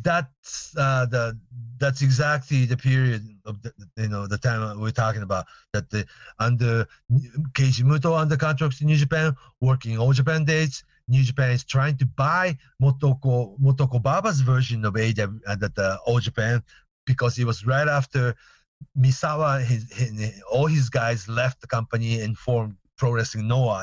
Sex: male